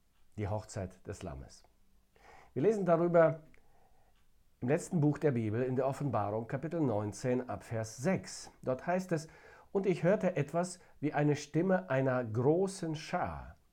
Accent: German